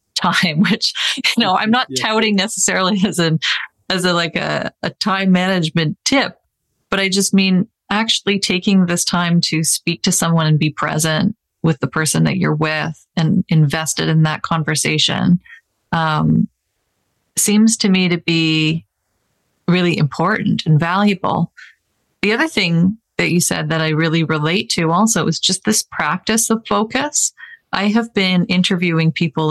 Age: 30-49